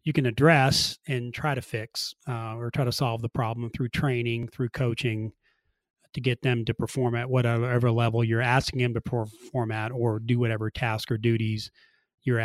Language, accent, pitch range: English, American, 115-135 Hz